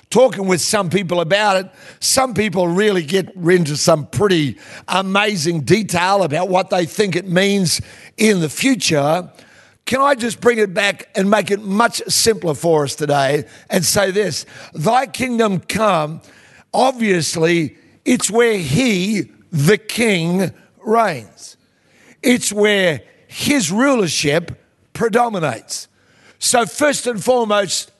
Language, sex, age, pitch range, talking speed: English, male, 50-69, 175-230 Hz, 130 wpm